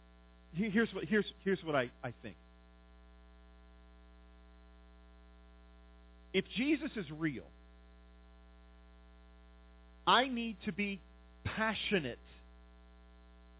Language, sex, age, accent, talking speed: English, male, 40-59, American, 75 wpm